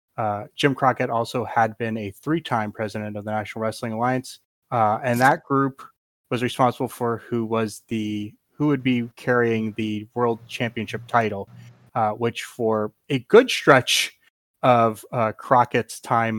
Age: 30-49